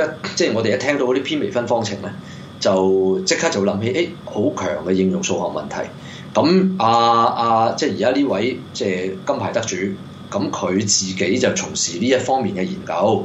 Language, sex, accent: Chinese, male, native